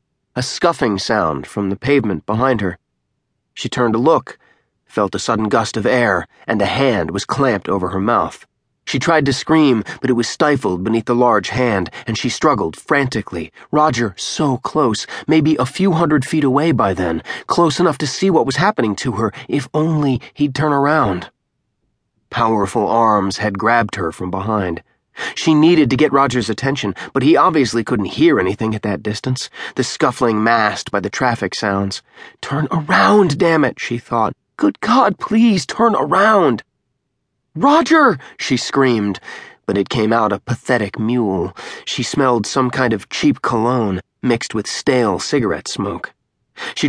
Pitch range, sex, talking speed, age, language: 105-150 Hz, male, 165 wpm, 30-49, English